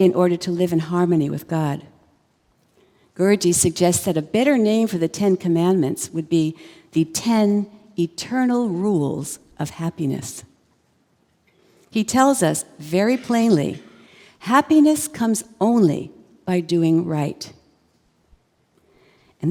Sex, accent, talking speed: female, American, 115 wpm